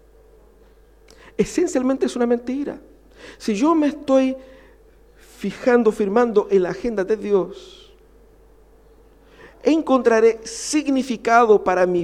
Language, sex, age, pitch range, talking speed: Spanish, male, 50-69, 185-285 Hz, 95 wpm